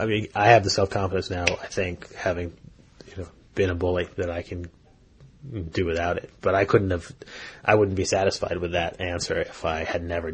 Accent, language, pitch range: American, English, 85-105 Hz